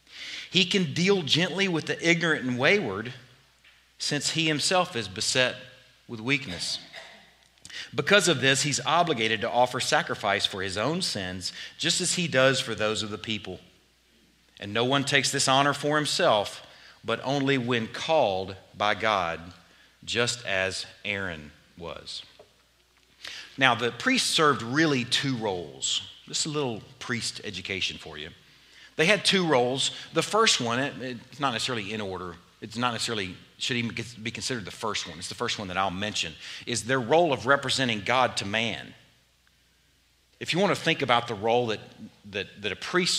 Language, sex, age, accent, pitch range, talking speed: English, male, 40-59, American, 100-140 Hz, 165 wpm